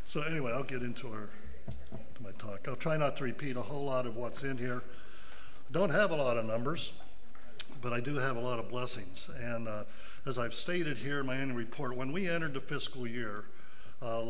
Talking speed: 215 wpm